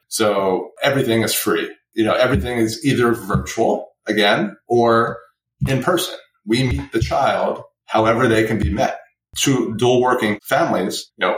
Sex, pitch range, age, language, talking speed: male, 105-125 Hz, 30-49, English, 155 wpm